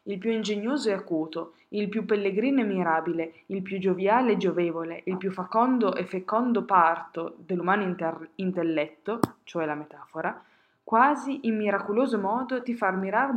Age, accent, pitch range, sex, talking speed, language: 20-39, native, 180-220 Hz, female, 155 wpm, Italian